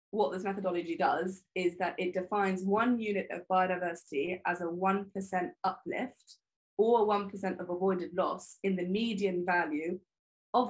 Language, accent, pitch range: English, British, 170-205 Hz